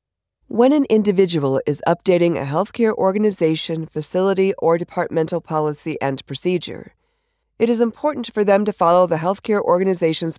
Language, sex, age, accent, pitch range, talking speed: English, female, 40-59, American, 155-200 Hz, 140 wpm